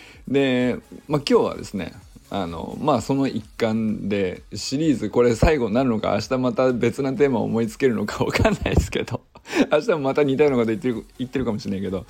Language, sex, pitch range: Japanese, male, 100-135 Hz